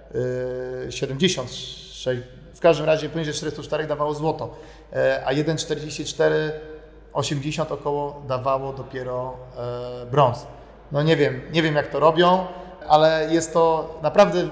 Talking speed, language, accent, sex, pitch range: 110 wpm, Polish, native, male, 130-155 Hz